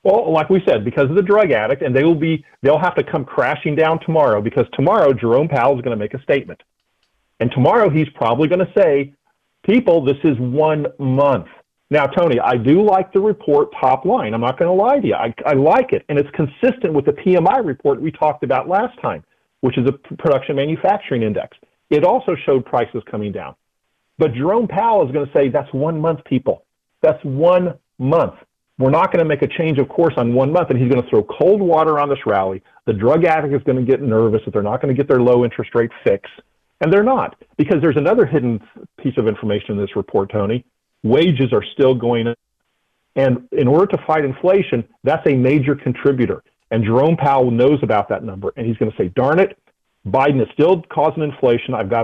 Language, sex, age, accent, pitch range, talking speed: English, male, 40-59, American, 120-160 Hz, 220 wpm